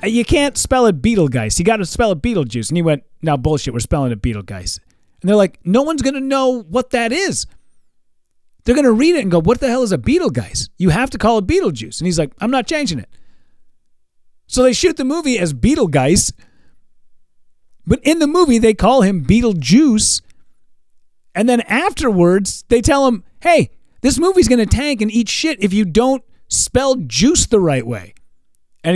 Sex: male